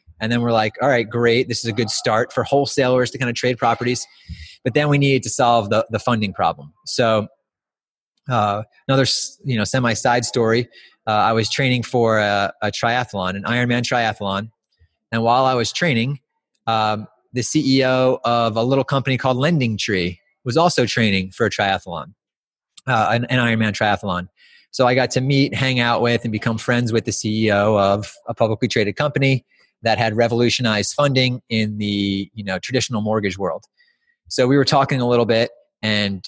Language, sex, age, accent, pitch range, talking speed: English, male, 30-49, American, 110-130 Hz, 185 wpm